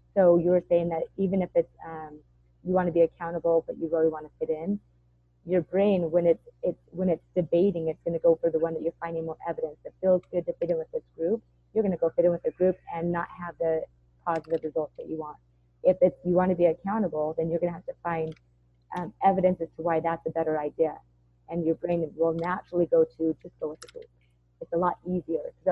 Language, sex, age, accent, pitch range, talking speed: English, female, 30-49, American, 160-180 Hz, 250 wpm